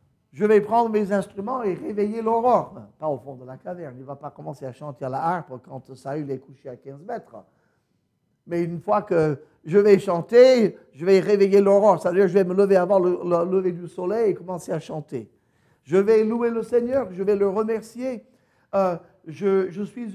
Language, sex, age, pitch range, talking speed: French, male, 50-69, 135-210 Hz, 210 wpm